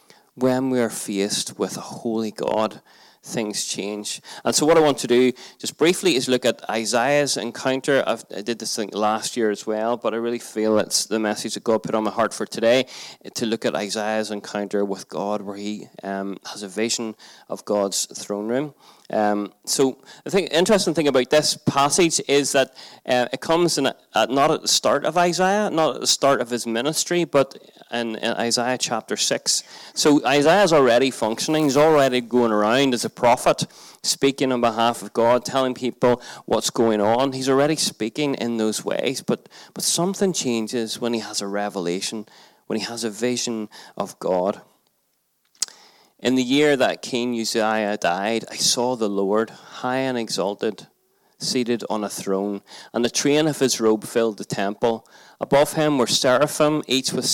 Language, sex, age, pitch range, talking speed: English, male, 20-39, 110-135 Hz, 185 wpm